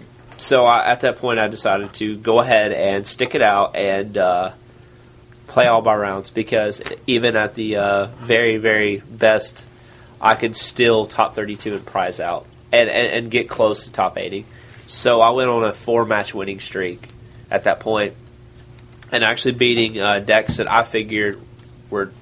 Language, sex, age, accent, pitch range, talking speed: English, male, 30-49, American, 100-120 Hz, 175 wpm